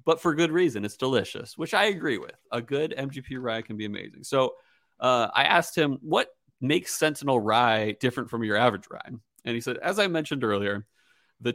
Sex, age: male, 30-49